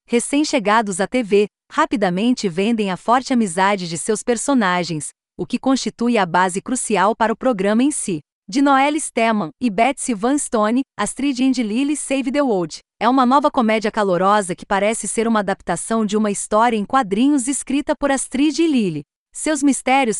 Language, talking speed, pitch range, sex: Portuguese, 170 wpm, 205-265 Hz, female